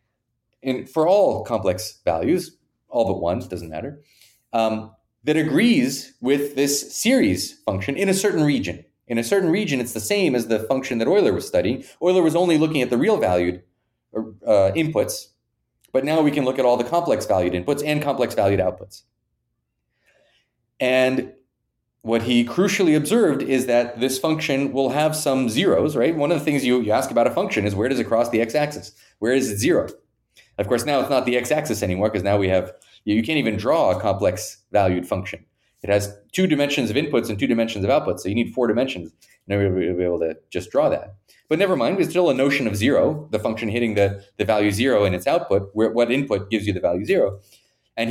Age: 30-49